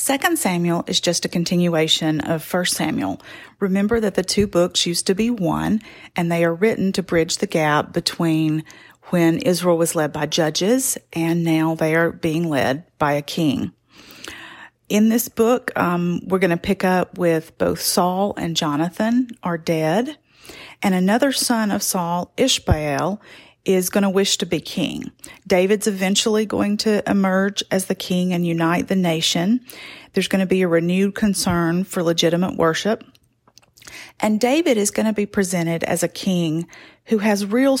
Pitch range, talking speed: 170-210 Hz, 170 wpm